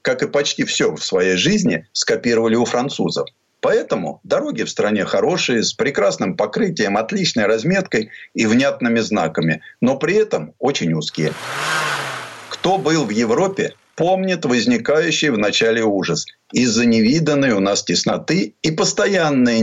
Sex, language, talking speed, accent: male, Russian, 135 wpm, native